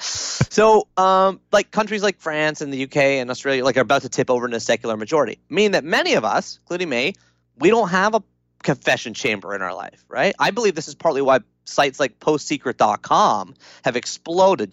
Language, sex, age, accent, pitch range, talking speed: English, male, 30-49, American, 115-175 Hz, 200 wpm